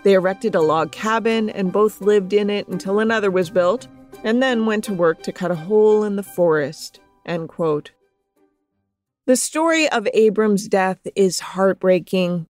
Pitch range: 180-220 Hz